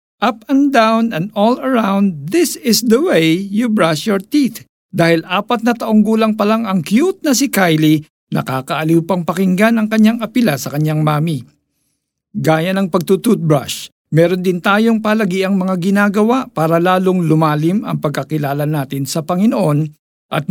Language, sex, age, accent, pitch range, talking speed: Filipino, male, 50-69, native, 150-200 Hz, 160 wpm